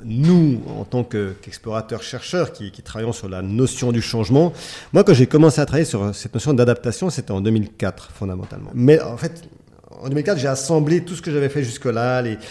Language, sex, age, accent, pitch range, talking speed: French, male, 40-59, French, 115-150 Hz, 195 wpm